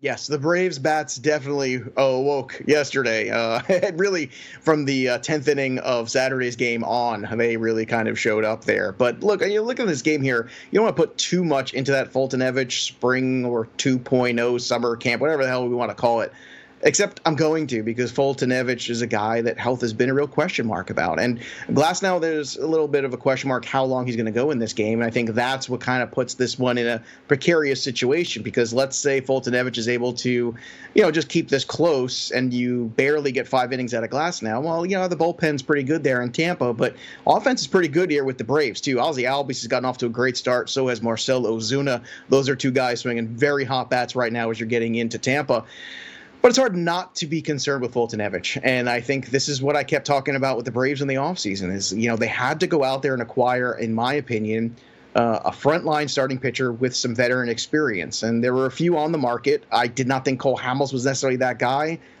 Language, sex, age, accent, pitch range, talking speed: English, male, 30-49, American, 120-145 Hz, 235 wpm